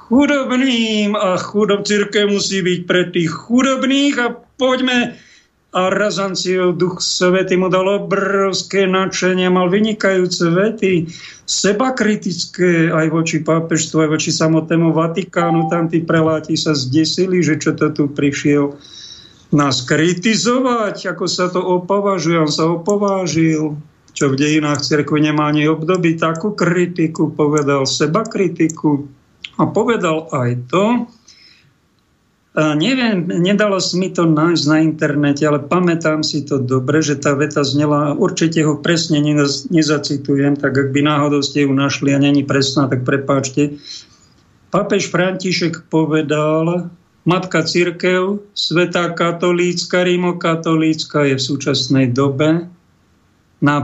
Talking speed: 125 wpm